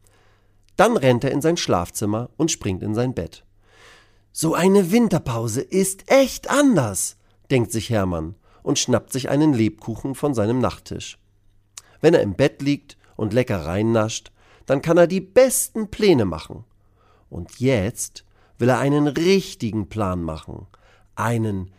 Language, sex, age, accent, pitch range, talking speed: German, male, 40-59, German, 100-150 Hz, 145 wpm